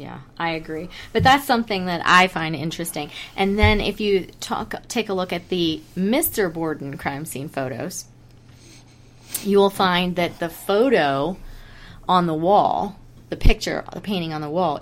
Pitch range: 150-190 Hz